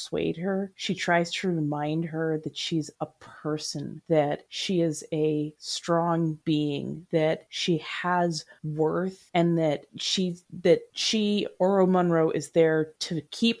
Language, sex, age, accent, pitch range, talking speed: English, female, 30-49, American, 155-175 Hz, 140 wpm